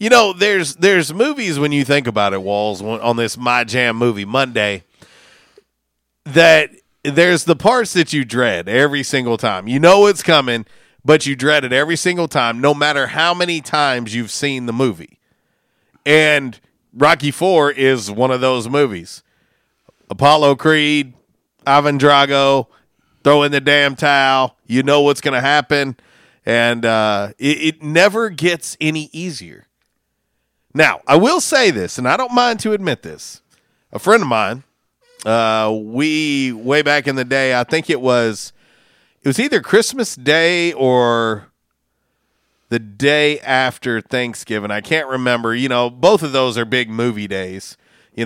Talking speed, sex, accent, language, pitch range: 160 wpm, male, American, English, 120-150 Hz